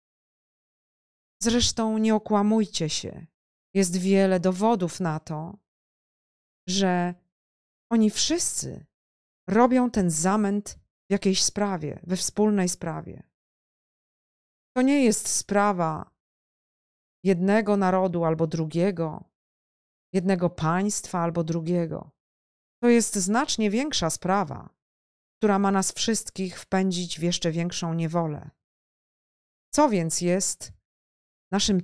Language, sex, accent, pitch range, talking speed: Polish, female, native, 170-205 Hz, 95 wpm